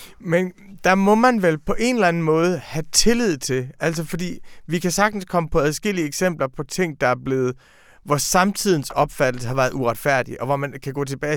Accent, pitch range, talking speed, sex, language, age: native, 130-180 Hz, 205 wpm, male, Danish, 30-49